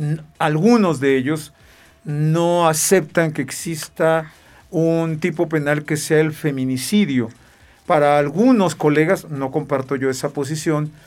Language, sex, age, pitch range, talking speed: Spanish, male, 50-69, 150-195 Hz, 120 wpm